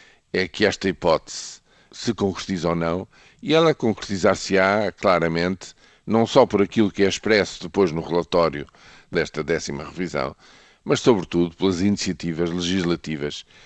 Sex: male